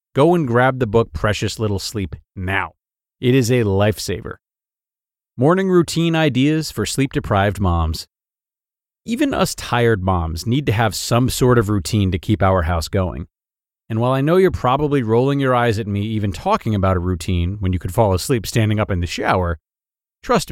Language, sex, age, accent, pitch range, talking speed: English, male, 30-49, American, 95-125 Hz, 180 wpm